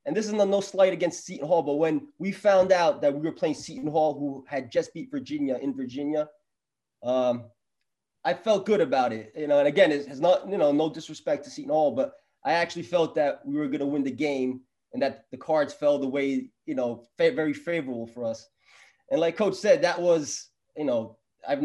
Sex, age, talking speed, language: male, 20-39, 220 wpm, English